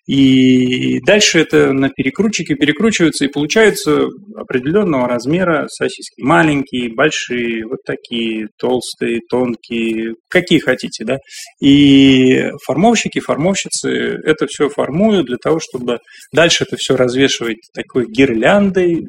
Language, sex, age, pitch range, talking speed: Russian, male, 20-39, 125-165 Hz, 110 wpm